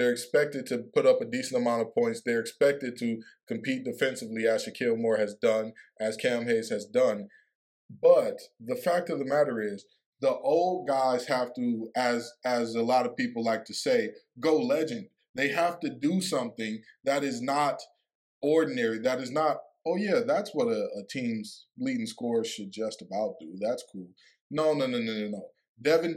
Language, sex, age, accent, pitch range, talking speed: English, male, 20-39, American, 125-215 Hz, 190 wpm